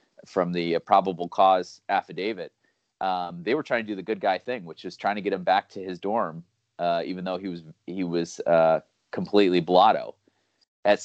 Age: 30-49